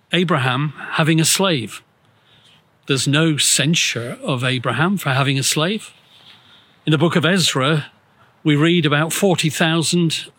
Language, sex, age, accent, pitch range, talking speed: English, male, 50-69, British, 140-180 Hz, 125 wpm